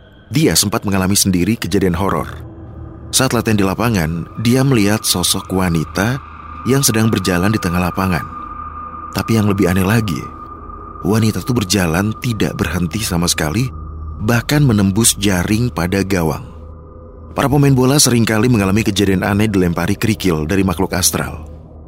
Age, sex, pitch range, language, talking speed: 30-49, male, 90-110 Hz, Indonesian, 135 wpm